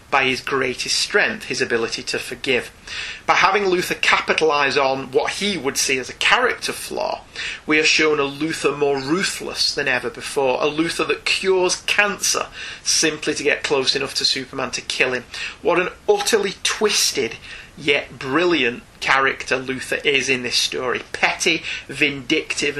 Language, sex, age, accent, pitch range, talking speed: English, male, 30-49, British, 130-160 Hz, 160 wpm